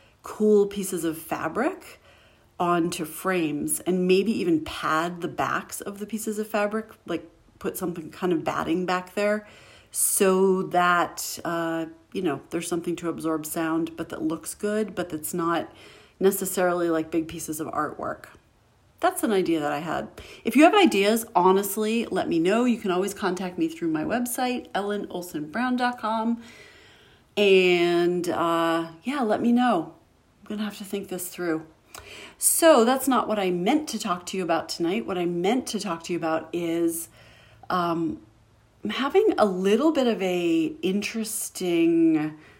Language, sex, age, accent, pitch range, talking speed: English, female, 40-59, American, 165-220 Hz, 160 wpm